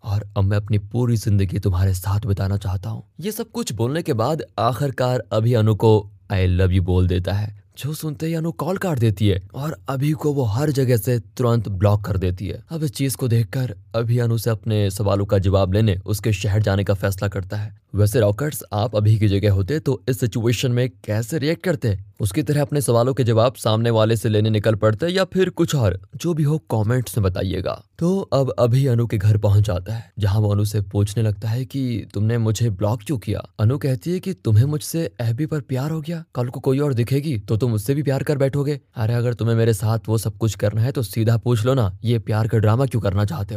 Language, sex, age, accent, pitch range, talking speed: Hindi, male, 20-39, native, 100-130 Hz, 230 wpm